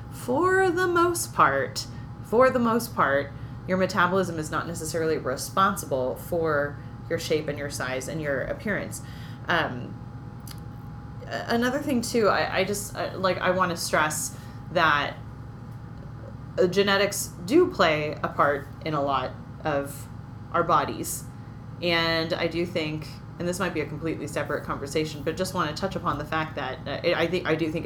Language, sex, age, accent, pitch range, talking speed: English, female, 30-49, American, 135-180 Hz, 160 wpm